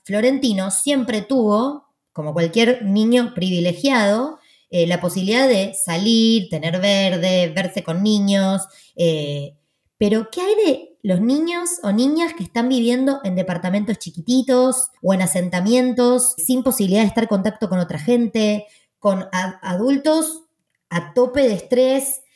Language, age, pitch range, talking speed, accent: Spanish, 20-39, 180-255 Hz, 135 wpm, Argentinian